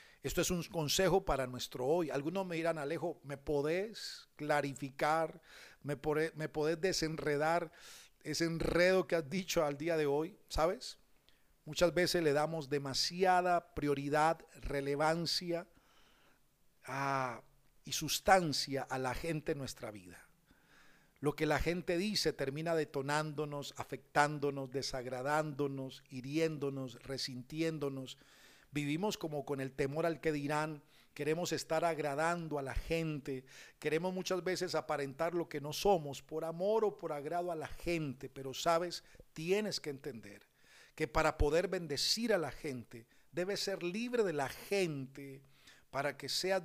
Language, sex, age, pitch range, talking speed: Spanish, male, 50-69, 140-165 Hz, 135 wpm